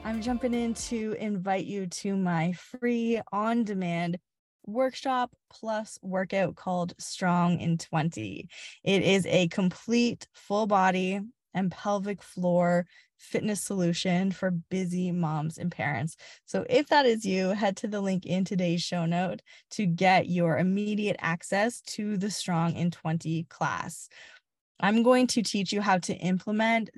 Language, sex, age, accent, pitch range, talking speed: English, female, 20-39, American, 175-205 Hz, 145 wpm